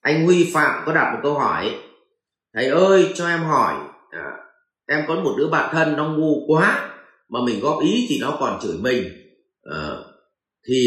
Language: Vietnamese